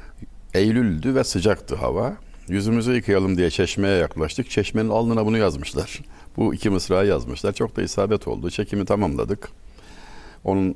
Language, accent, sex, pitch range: Turkish, native, male, 75-110 Hz